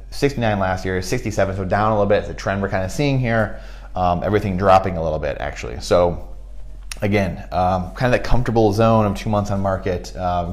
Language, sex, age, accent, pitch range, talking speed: English, male, 30-49, American, 90-110 Hz, 215 wpm